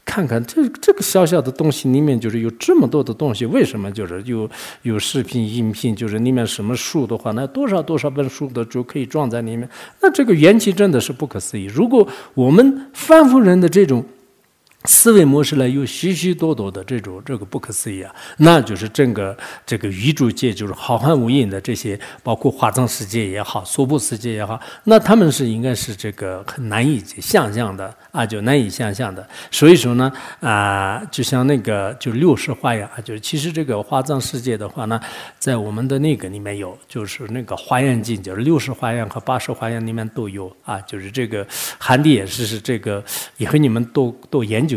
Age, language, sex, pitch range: 50-69, English, male, 105-140 Hz